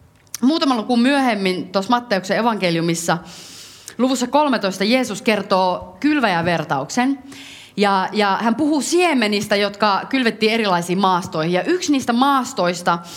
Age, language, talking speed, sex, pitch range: 30-49, Finnish, 110 wpm, female, 175-245 Hz